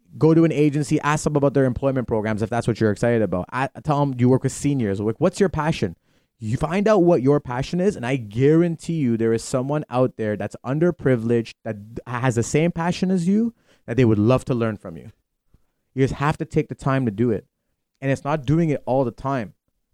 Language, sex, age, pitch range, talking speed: English, male, 30-49, 110-140 Hz, 230 wpm